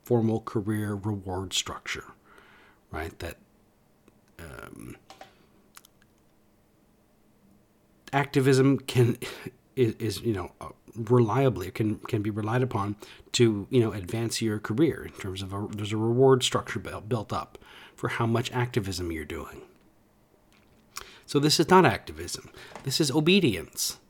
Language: English